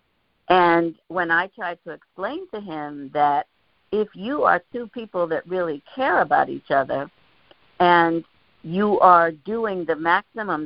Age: 60-79